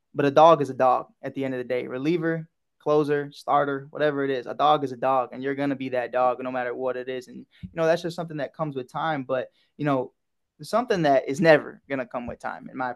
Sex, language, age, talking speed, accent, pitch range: male, English, 20-39, 275 wpm, American, 135-160 Hz